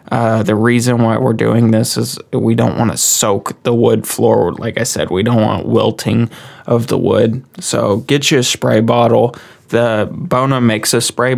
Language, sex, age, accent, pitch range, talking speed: English, male, 20-39, American, 115-130 Hz, 195 wpm